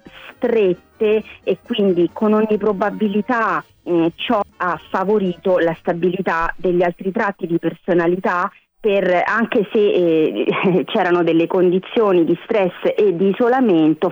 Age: 30-49